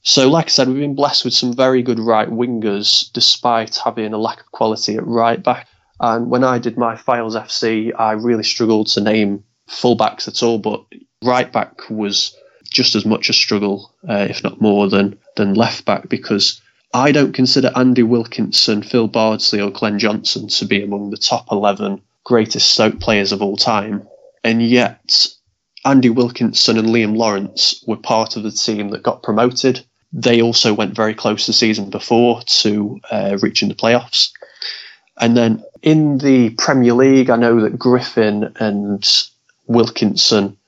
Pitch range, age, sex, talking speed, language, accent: 105-120 Hz, 20-39, male, 175 wpm, English, British